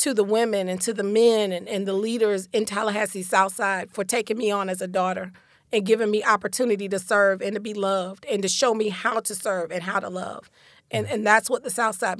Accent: American